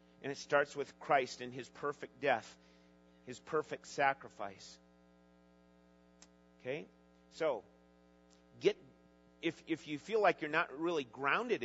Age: 40-59